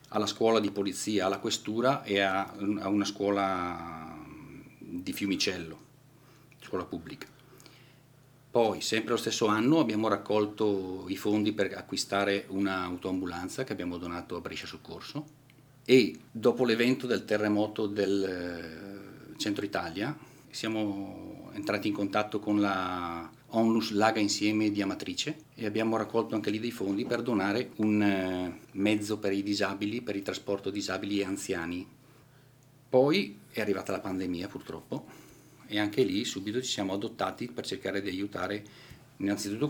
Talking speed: 135 wpm